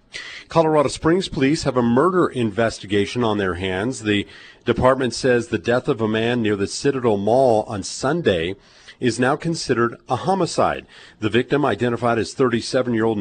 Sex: male